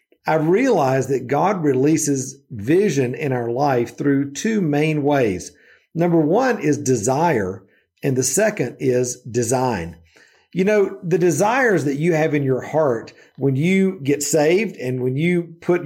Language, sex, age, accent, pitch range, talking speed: English, male, 50-69, American, 135-170 Hz, 150 wpm